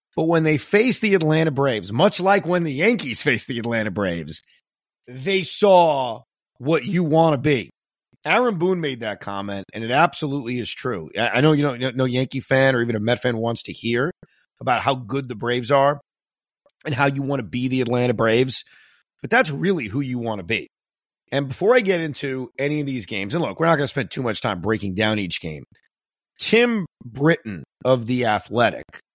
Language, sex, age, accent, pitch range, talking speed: English, male, 30-49, American, 120-155 Hz, 205 wpm